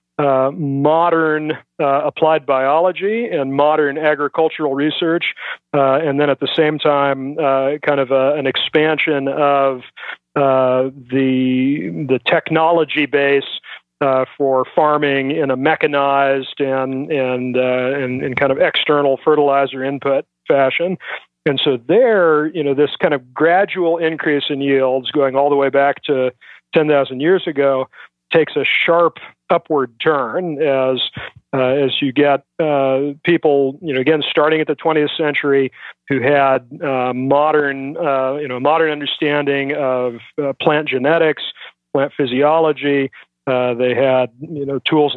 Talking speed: 145 wpm